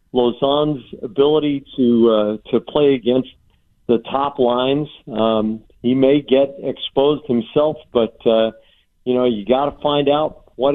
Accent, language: American, English